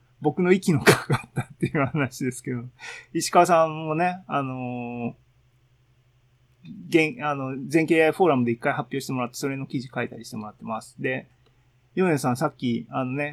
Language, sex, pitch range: Japanese, male, 125-160 Hz